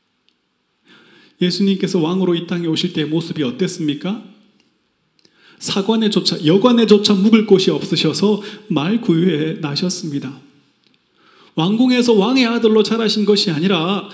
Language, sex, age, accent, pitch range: Korean, male, 30-49, native, 170-225 Hz